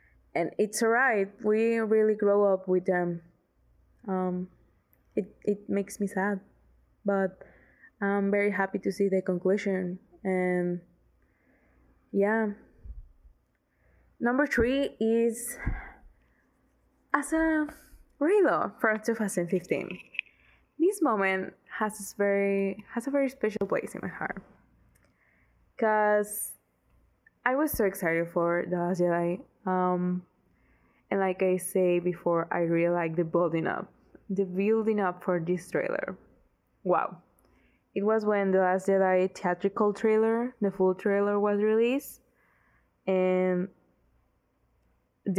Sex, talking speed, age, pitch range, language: female, 120 wpm, 20-39, 180-220 Hz, English